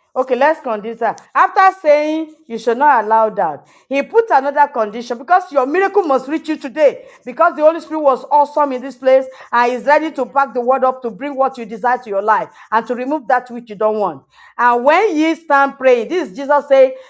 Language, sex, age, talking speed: English, female, 40-59, 220 wpm